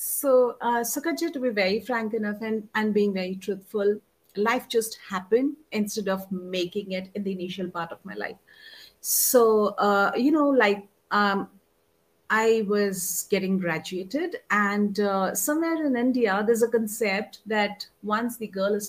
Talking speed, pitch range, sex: 160 wpm, 190-235 Hz, female